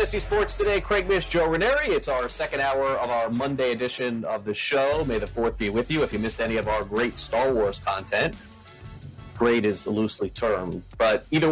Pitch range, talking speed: 110-140 Hz, 205 wpm